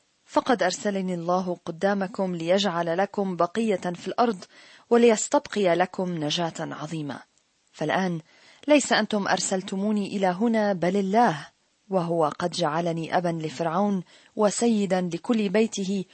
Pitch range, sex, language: 175-215 Hz, female, Arabic